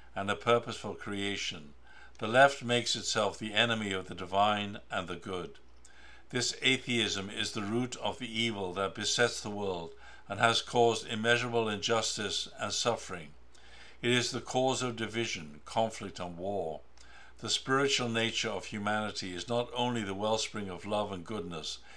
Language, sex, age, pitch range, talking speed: English, male, 60-79, 100-115 Hz, 160 wpm